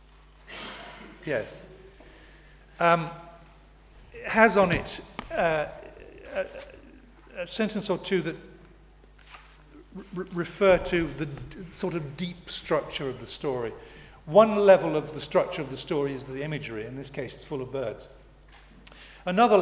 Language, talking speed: English, 130 wpm